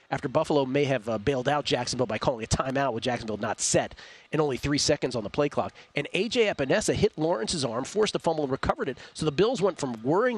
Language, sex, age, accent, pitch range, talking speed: English, male, 40-59, American, 130-165 Hz, 245 wpm